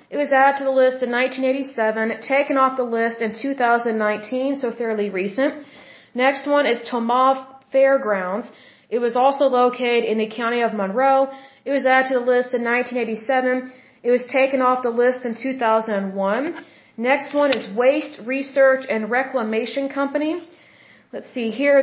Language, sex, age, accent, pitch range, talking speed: Hindi, female, 30-49, American, 235-280 Hz, 160 wpm